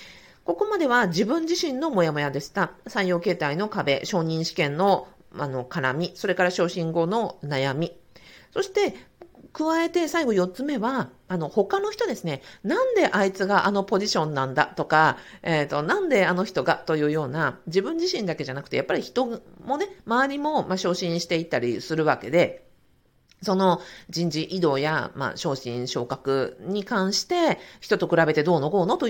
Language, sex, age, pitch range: Japanese, female, 50-69, 150-215 Hz